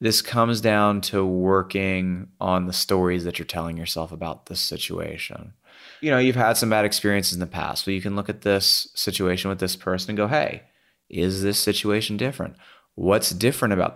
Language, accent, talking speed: English, American, 200 wpm